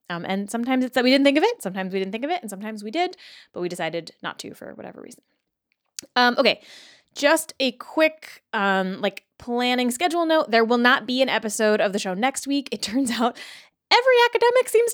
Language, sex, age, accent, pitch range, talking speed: English, female, 20-39, American, 185-280 Hz, 220 wpm